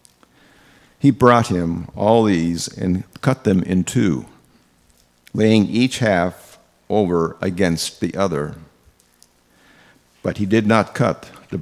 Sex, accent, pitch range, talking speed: male, American, 75-110 Hz, 120 wpm